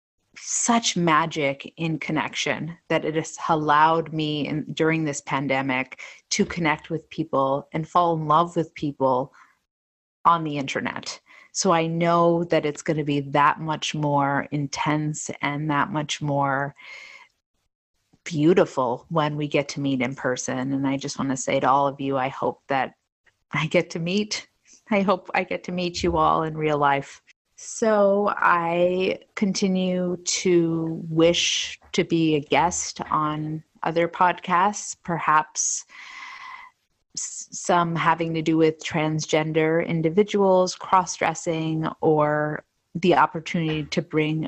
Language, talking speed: English, 140 wpm